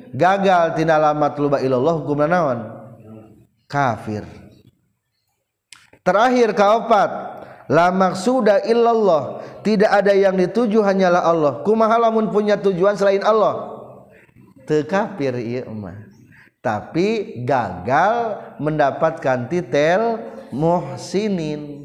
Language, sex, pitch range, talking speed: Indonesian, male, 130-210 Hz, 75 wpm